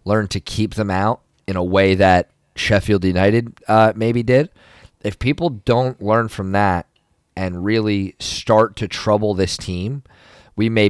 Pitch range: 95-110 Hz